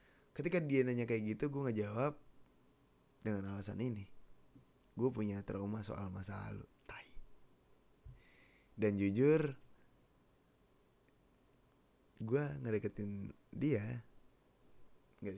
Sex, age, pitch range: male, 20-39, 100-120 Hz